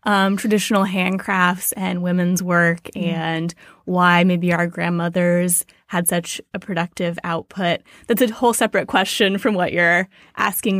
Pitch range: 175-205 Hz